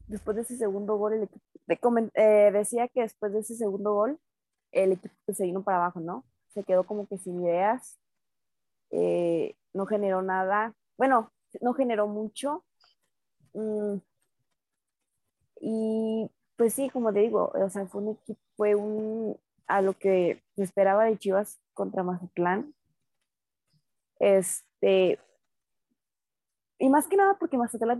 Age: 20-39